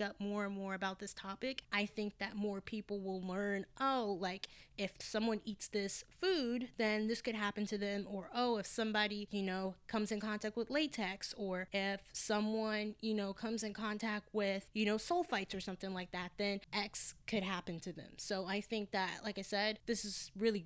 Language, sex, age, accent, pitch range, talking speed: English, female, 10-29, American, 195-230 Hz, 205 wpm